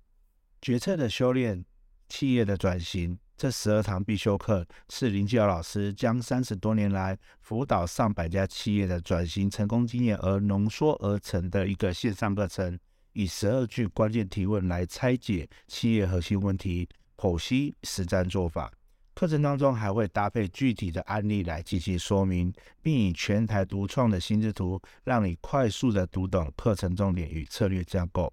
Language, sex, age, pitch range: Chinese, male, 60-79, 90-110 Hz